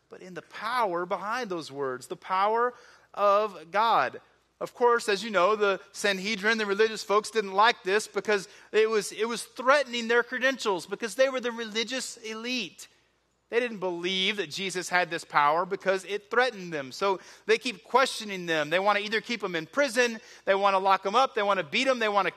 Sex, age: male, 30-49